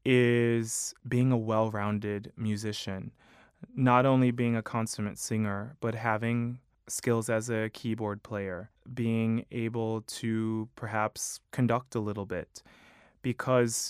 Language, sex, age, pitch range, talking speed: English, male, 20-39, 105-115 Hz, 115 wpm